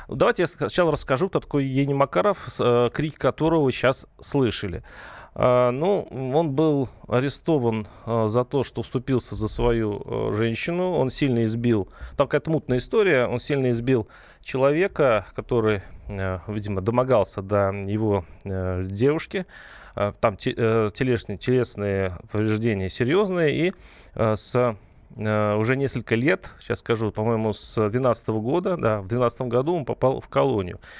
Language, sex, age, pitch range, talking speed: Russian, male, 30-49, 110-140 Hz, 125 wpm